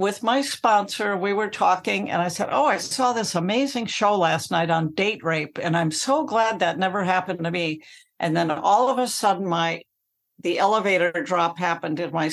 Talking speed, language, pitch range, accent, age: 205 wpm, English, 165-195 Hz, American, 60-79